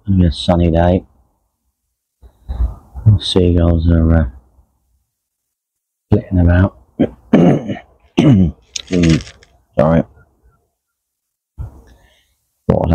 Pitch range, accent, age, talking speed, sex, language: 75-85 Hz, British, 40-59, 55 wpm, male, English